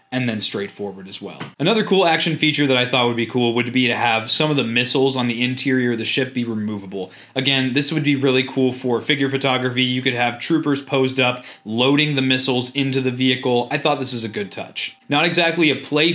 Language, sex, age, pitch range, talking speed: English, male, 20-39, 120-145 Hz, 235 wpm